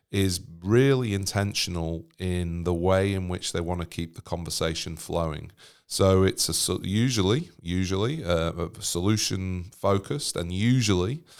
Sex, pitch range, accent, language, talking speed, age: male, 85-95 Hz, British, English, 140 wpm, 30-49